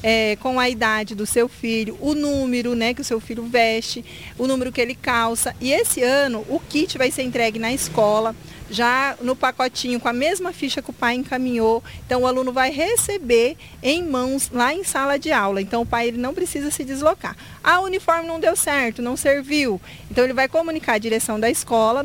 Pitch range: 235-295 Hz